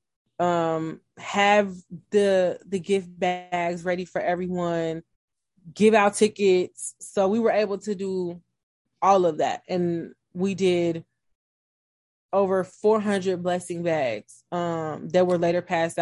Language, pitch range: English, 165-185 Hz